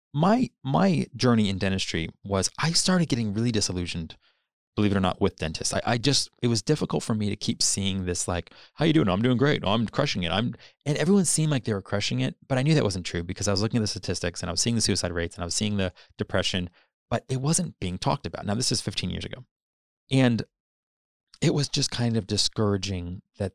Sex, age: male, 30-49